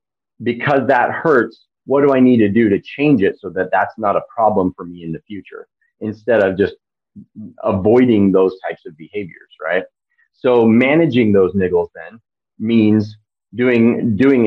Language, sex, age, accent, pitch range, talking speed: English, male, 30-49, American, 100-135 Hz, 165 wpm